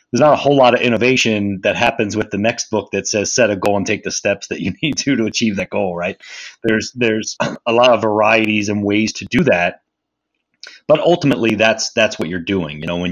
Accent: American